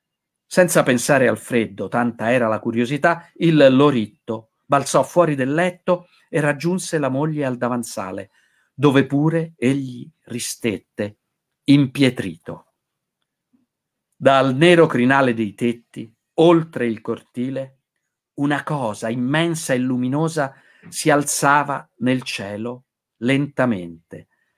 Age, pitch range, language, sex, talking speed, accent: 50-69, 115-145 Hz, Italian, male, 105 wpm, native